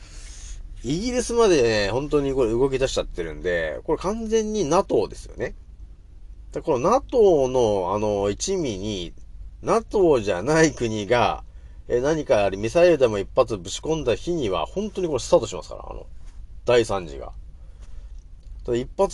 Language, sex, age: Japanese, male, 40-59